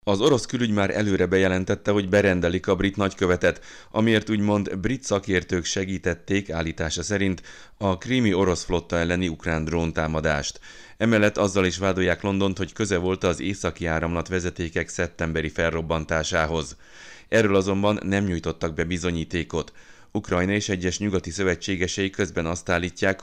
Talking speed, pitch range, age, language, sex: 135 wpm, 80-100 Hz, 30-49, Hungarian, male